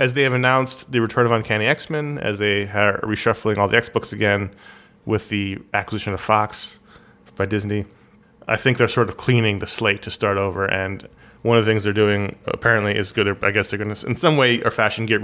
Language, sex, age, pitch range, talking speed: English, male, 20-39, 100-125 Hz, 230 wpm